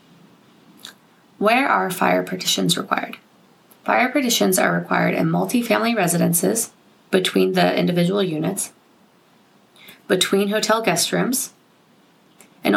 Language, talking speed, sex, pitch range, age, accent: English, 100 wpm, female, 165-210 Hz, 20-39, American